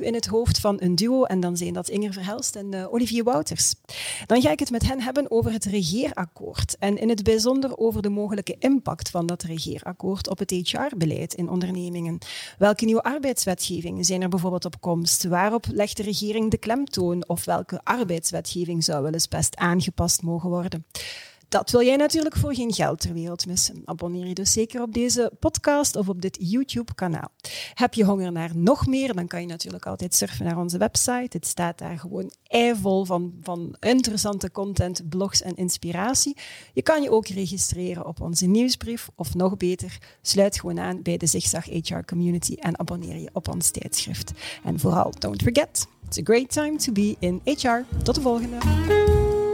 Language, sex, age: Dutch, female, 30-49